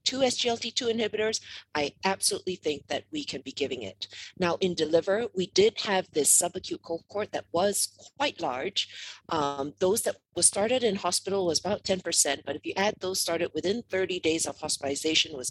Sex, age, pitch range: female, 40-59, 150-200 Hz